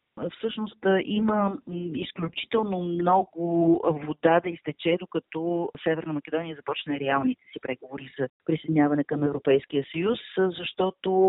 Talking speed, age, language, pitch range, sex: 105 wpm, 40-59, Bulgarian, 145-180 Hz, female